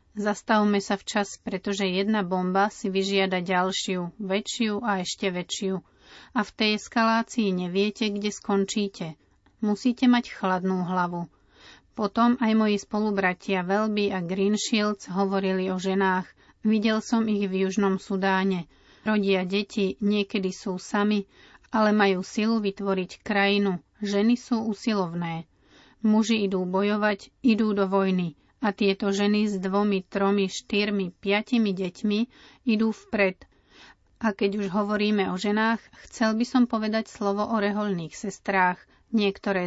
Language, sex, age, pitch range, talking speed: Slovak, female, 40-59, 190-210 Hz, 130 wpm